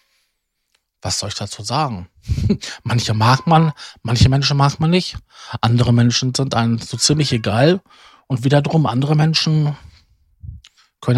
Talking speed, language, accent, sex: 135 wpm, German, German, male